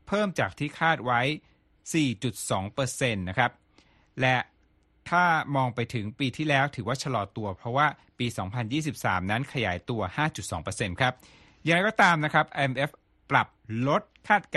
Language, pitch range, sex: Thai, 105-145 Hz, male